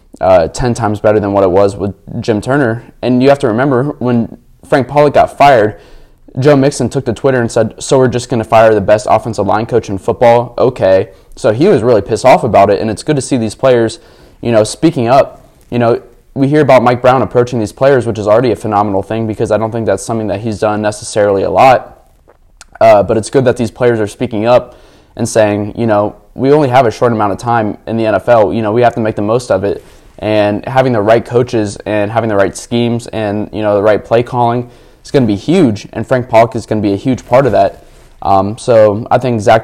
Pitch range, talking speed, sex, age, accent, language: 105-125 Hz, 245 wpm, male, 20-39, American, English